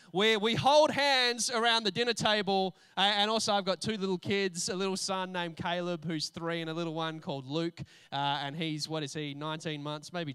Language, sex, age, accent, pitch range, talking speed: English, male, 20-39, Australian, 155-215 Hz, 215 wpm